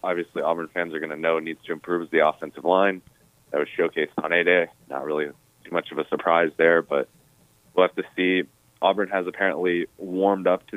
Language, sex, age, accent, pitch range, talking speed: English, male, 20-39, American, 80-95 Hz, 210 wpm